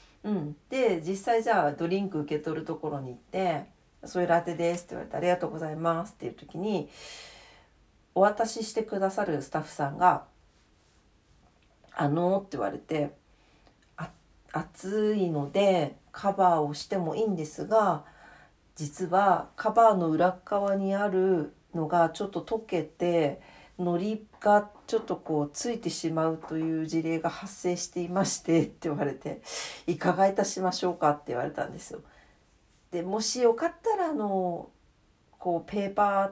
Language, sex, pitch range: Japanese, female, 155-205 Hz